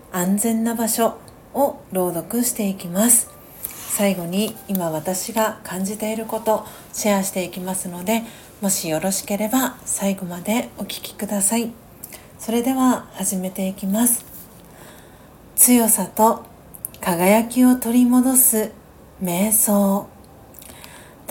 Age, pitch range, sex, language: 40-59, 185-225 Hz, female, Japanese